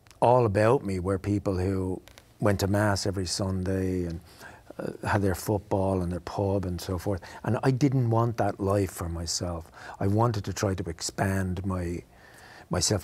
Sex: male